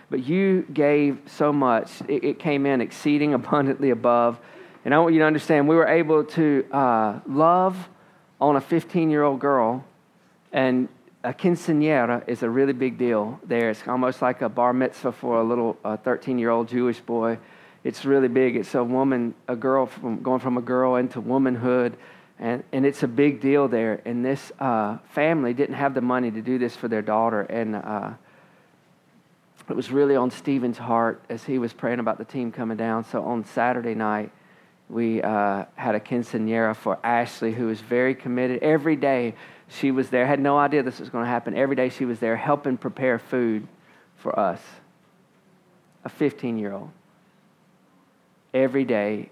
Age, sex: 40-59, male